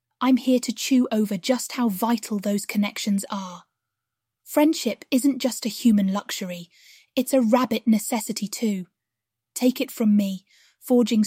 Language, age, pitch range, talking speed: English, 30-49, 200-245 Hz, 145 wpm